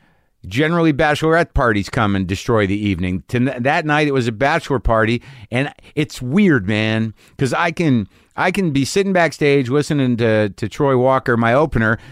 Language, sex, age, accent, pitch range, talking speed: English, male, 50-69, American, 115-155 Hz, 165 wpm